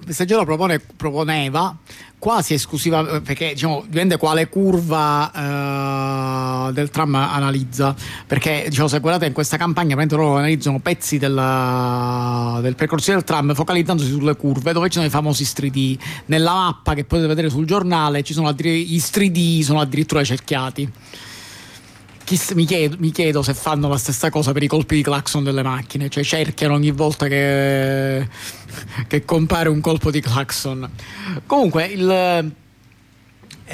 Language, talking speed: Italian, 150 wpm